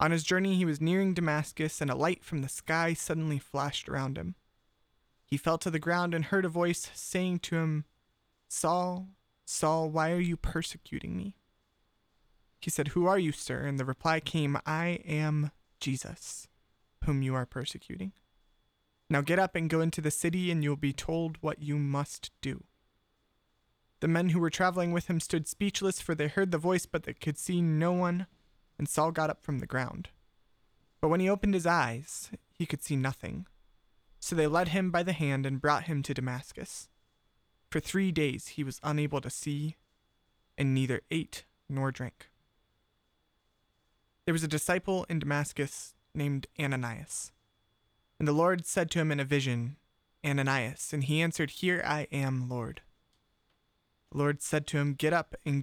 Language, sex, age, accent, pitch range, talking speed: English, male, 20-39, American, 140-170 Hz, 180 wpm